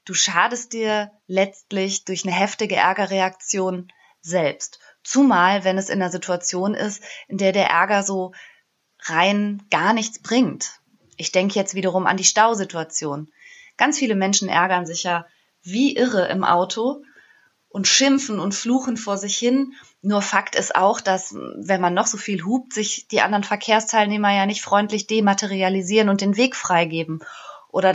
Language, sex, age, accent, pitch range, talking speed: German, female, 20-39, German, 185-225 Hz, 155 wpm